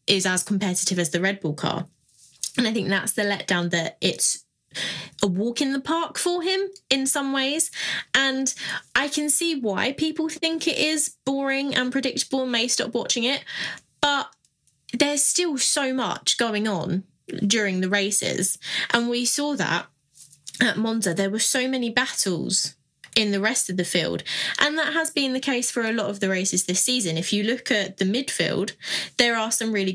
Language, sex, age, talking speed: English, female, 20-39, 190 wpm